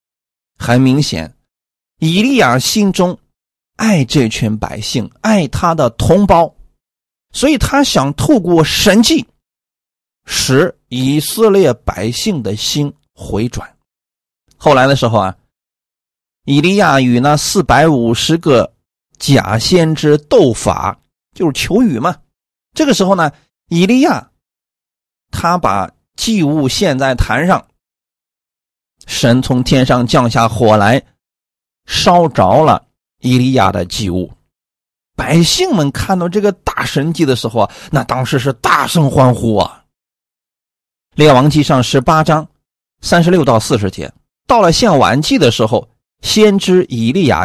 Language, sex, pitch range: Chinese, male, 110-165 Hz